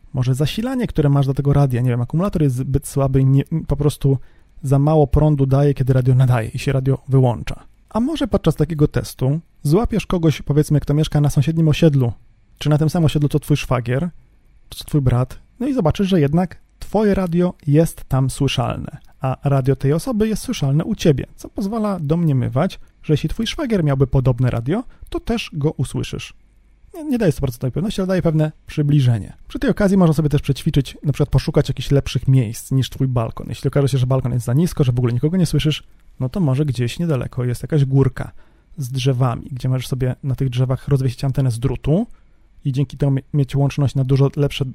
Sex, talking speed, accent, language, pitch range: male, 205 wpm, native, Polish, 130-160 Hz